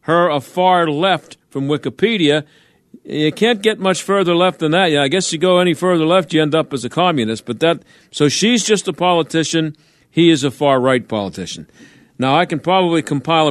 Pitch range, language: 135-175 Hz, English